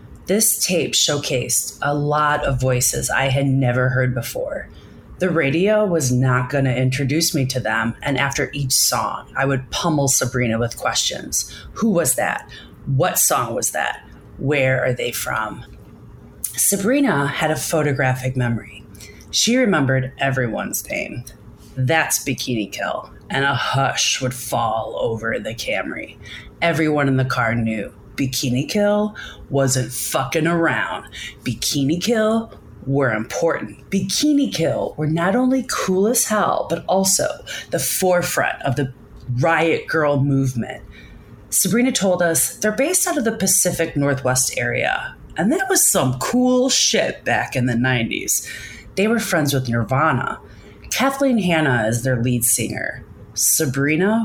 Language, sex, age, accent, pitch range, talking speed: English, female, 30-49, American, 125-185 Hz, 140 wpm